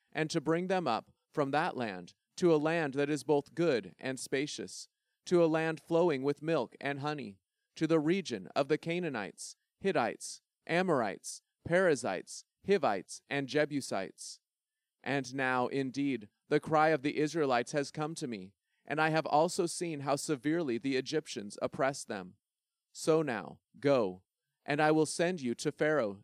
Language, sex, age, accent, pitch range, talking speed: English, male, 30-49, American, 130-160 Hz, 160 wpm